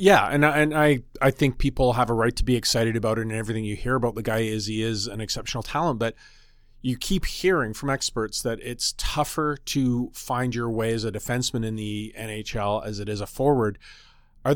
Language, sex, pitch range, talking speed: English, male, 115-145 Hz, 225 wpm